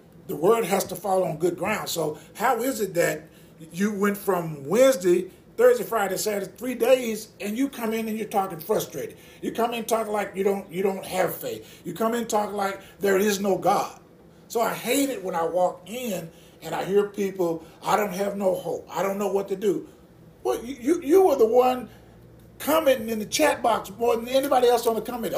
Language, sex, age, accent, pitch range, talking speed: English, male, 40-59, American, 170-225 Hz, 220 wpm